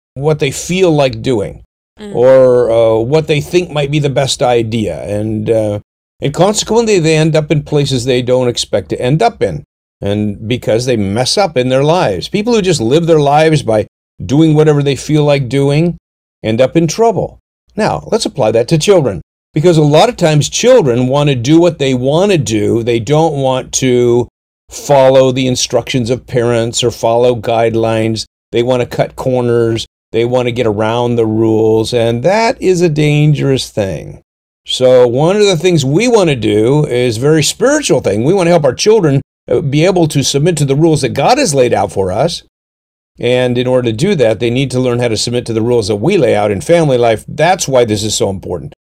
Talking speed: 205 wpm